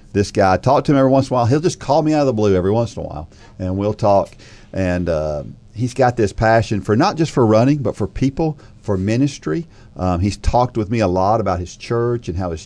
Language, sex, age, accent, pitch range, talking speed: English, male, 50-69, American, 95-120 Hz, 265 wpm